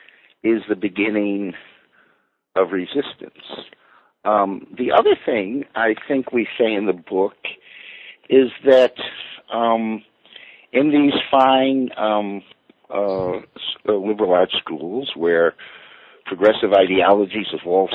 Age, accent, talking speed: 60-79, American, 105 wpm